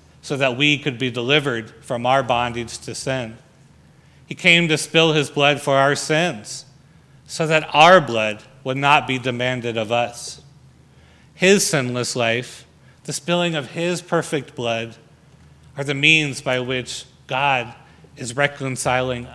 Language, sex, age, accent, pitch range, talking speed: English, male, 40-59, American, 130-155 Hz, 145 wpm